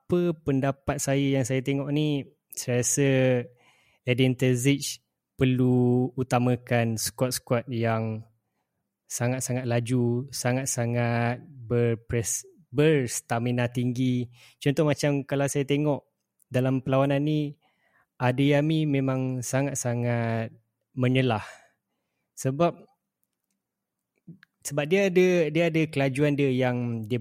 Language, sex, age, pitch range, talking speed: Malay, male, 20-39, 120-140 Hz, 95 wpm